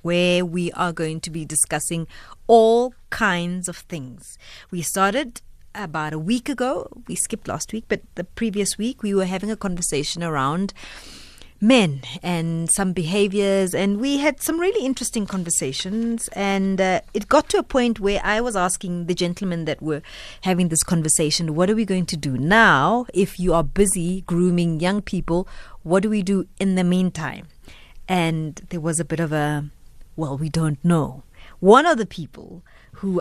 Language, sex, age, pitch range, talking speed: English, female, 30-49, 165-220 Hz, 175 wpm